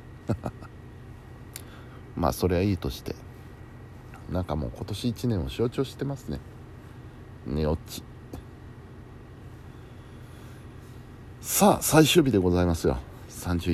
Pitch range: 100-120 Hz